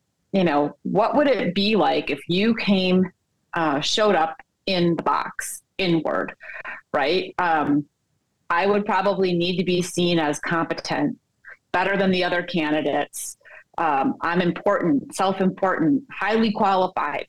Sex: female